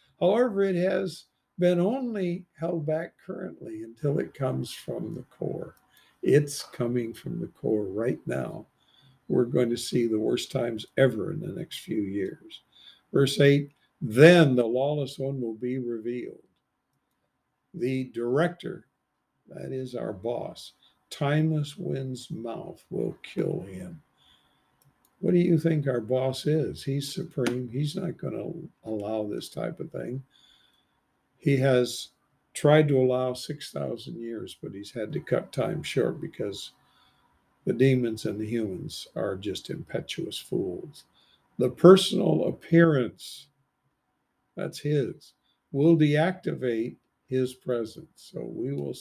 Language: English